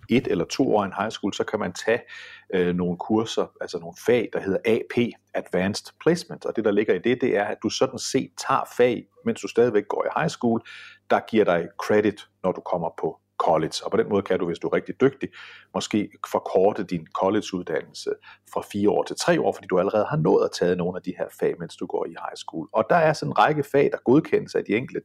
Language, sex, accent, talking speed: Danish, male, native, 250 wpm